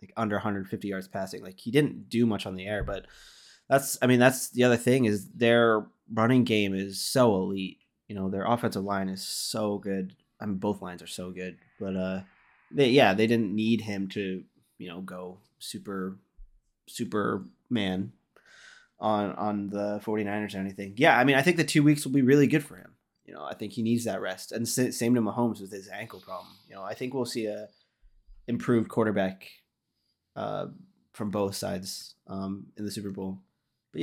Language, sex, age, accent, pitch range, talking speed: English, male, 20-39, American, 100-120 Hz, 200 wpm